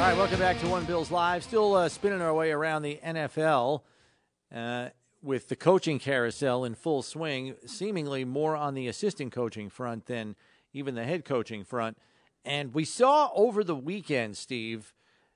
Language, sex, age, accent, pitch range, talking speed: English, male, 40-59, American, 125-160 Hz, 170 wpm